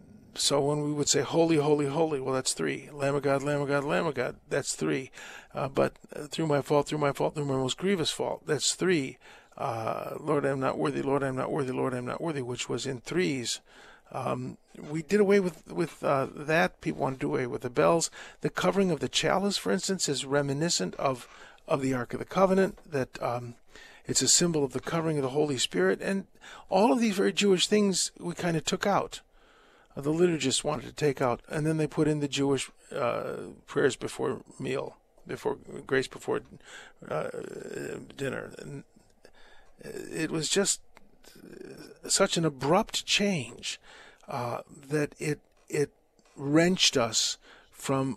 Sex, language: male, English